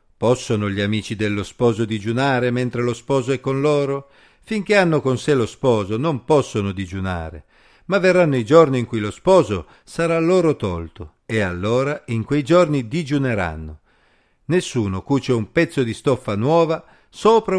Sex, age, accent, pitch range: male, 50-69, native, 105-155 Hz